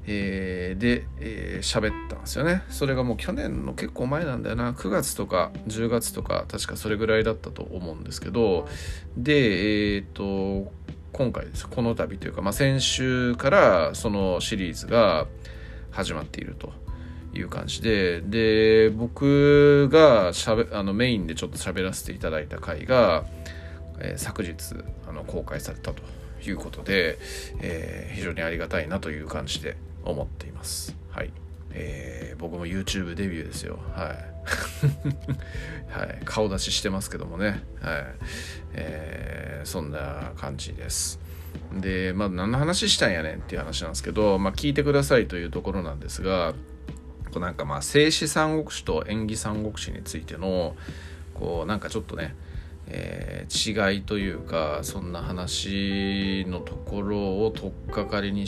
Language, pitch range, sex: Japanese, 80-105 Hz, male